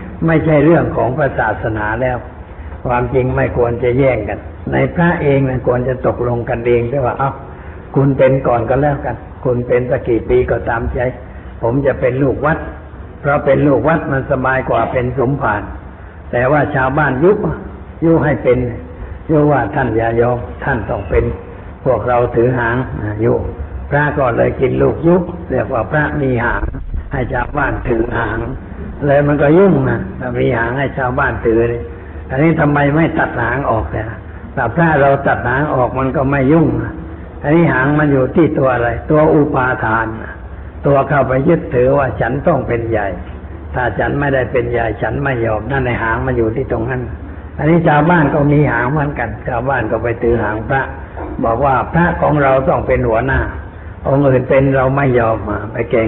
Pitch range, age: 110-140 Hz, 60-79